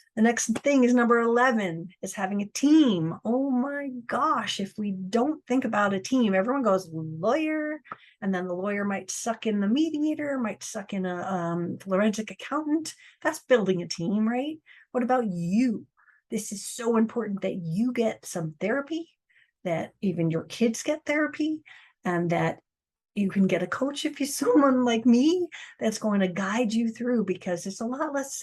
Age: 40-59